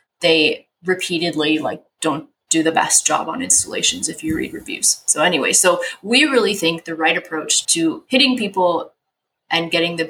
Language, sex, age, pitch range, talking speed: English, female, 20-39, 160-200 Hz, 170 wpm